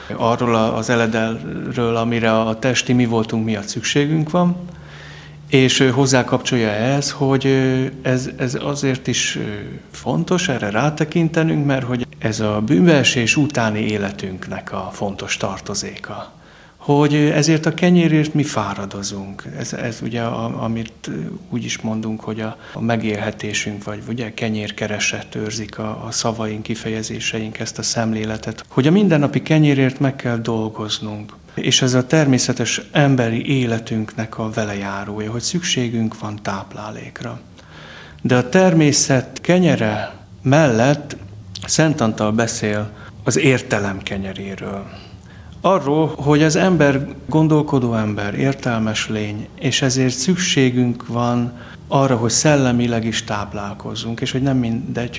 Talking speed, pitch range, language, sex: 125 wpm, 105-135 Hz, Hungarian, male